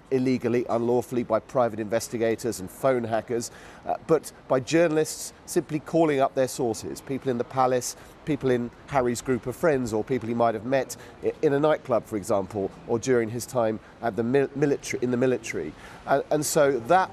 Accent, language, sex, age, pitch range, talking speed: British, English, male, 40-59, 110-140 Hz, 185 wpm